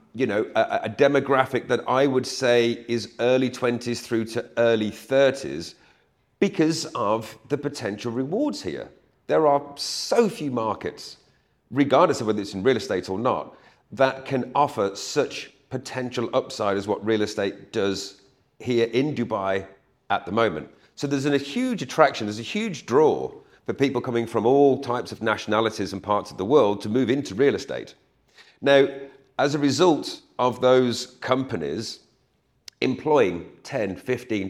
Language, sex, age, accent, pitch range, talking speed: English, male, 40-59, British, 105-135 Hz, 155 wpm